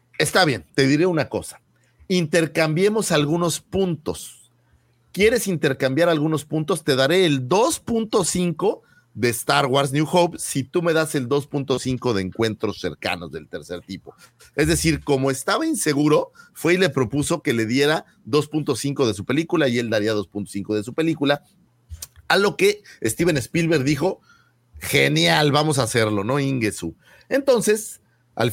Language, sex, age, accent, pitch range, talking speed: Spanish, male, 40-59, Mexican, 110-160 Hz, 150 wpm